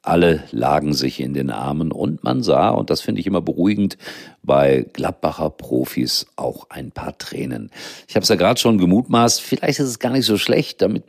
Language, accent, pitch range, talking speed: German, German, 75-100 Hz, 200 wpm